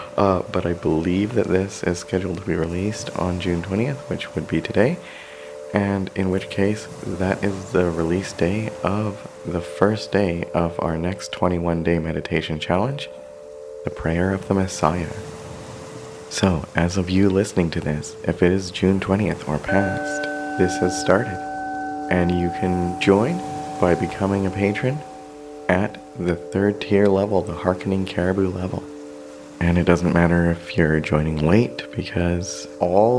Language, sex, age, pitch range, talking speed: English, male, 30-49, 85-105 Hz, 155 wpm